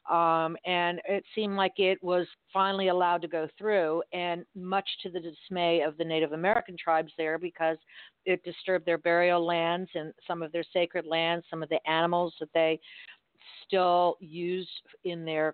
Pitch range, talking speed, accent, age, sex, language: 165-195 Hz, 175 wpm, American, 50-69, female, English